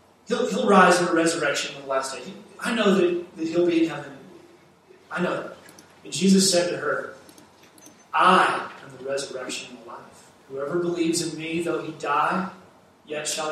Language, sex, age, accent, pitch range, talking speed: English, male, 40-59, American, 140-190 Hz, 185 wpm